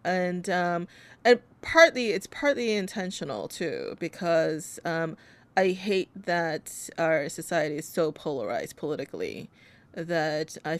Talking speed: 115 wpm